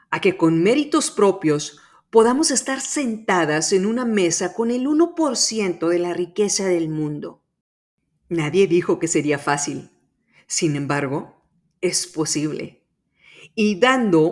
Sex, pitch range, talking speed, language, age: female, 160-220 Hz, 125 wpm, Spanish, 40-59